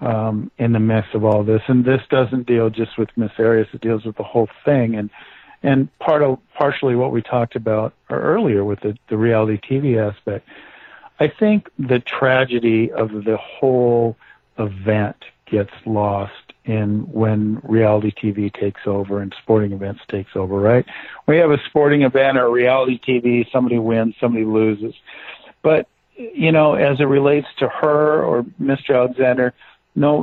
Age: 50-69